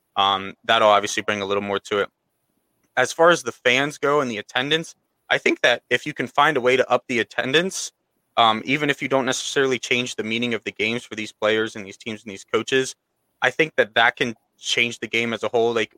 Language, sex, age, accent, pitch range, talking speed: English, male, 20-39, American, 110-130 Hz, 240 wpm